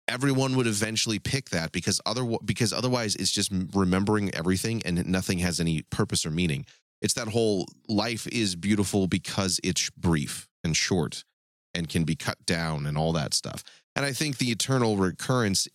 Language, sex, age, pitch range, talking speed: English, male, 30-49, 90-115 Hz, 170 wpm